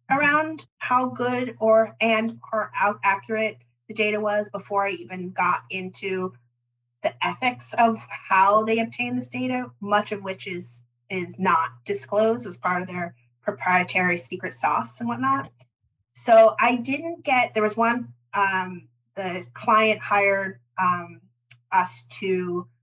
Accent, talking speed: American, 140 wpm